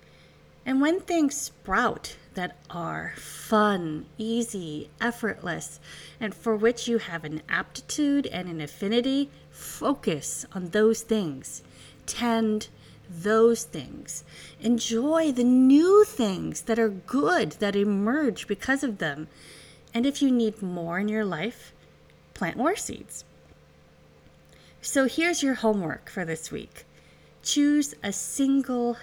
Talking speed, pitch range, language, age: 120 wpm, 155-240 Hz, English, 30-49